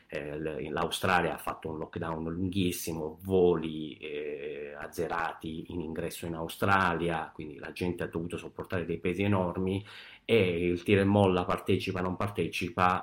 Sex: male